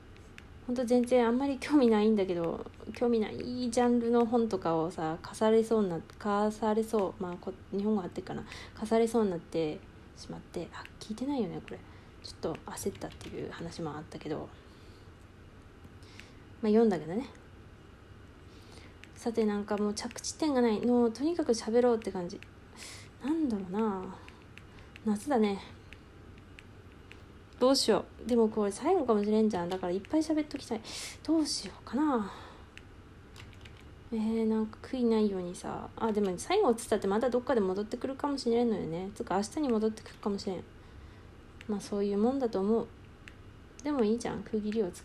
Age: 20-39